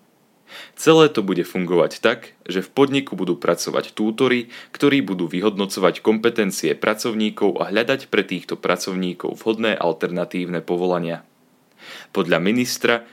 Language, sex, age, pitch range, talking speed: Slovak, male, 30-49, 90-120 Hz, 120 wpm